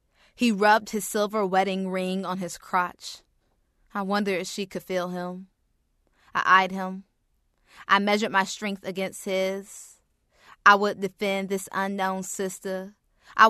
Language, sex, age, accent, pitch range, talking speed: English, female, 20-39, American, 185-210 Hz, 140 wpm